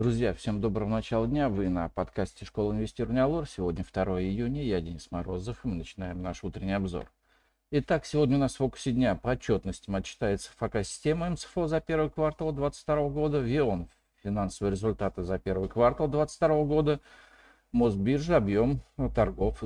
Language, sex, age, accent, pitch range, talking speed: Russian, male, 50-69, native, 100-150 Hz, 155 wpm